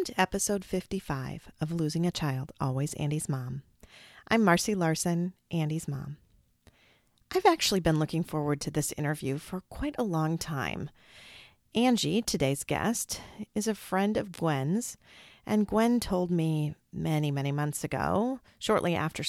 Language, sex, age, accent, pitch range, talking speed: English, female, 40-59, American, 140-190 Hz, 140 wpm